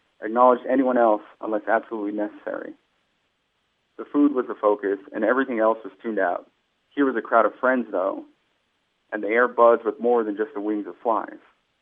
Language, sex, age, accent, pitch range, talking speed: English, male, 30-49, American, 110-130 Hz, 185 wpm